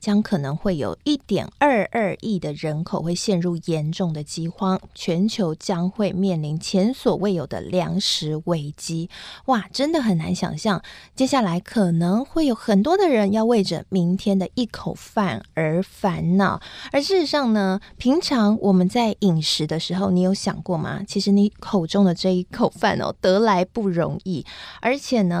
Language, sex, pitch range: Chinese, female, 175-225 Hz